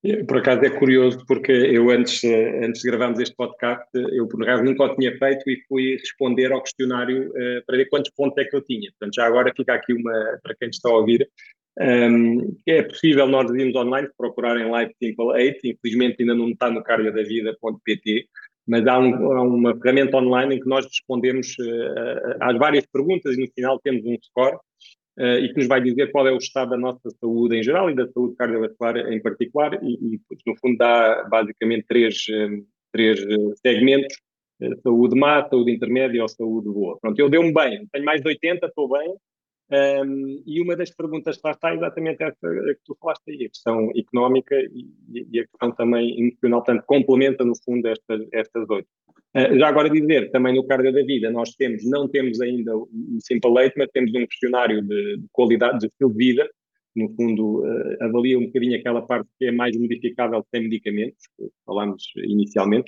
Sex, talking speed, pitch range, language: male, 200 wpm, 115-135 Hz, Portuguese